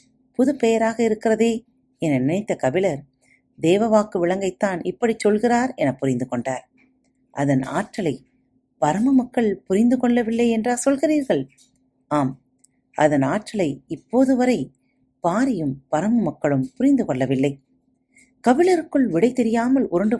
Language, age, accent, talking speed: Tamil, 40-59, native, 105 wpm